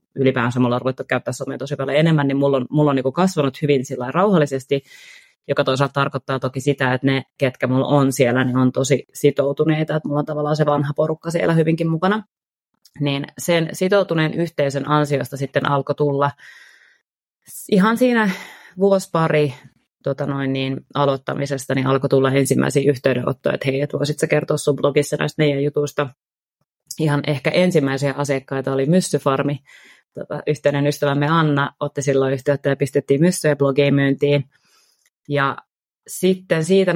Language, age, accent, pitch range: Finnish, 30-49, native, 135-155 Hz